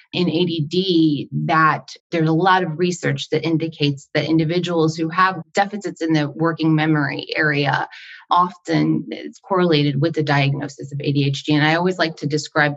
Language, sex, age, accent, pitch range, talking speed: English, female, 20-39, American, 155-180 Hz, 160 wpm